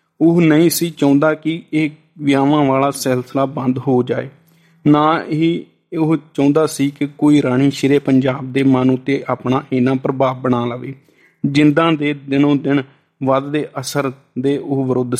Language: Punjabi